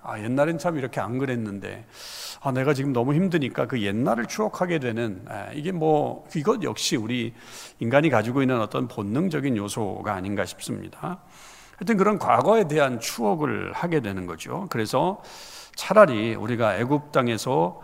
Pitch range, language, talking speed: 115-155 Hz, English, 140 wpm